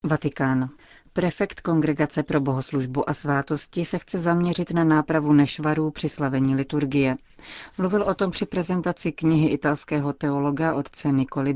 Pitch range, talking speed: 140-160 Hz, 135 wpm